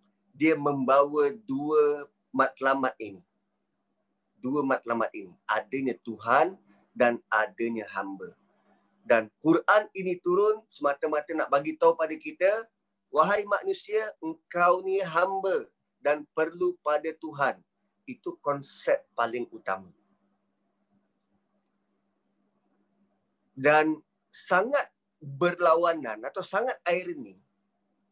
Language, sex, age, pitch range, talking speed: Malay, male, 30-49, 140-200 Hz, 90 wpm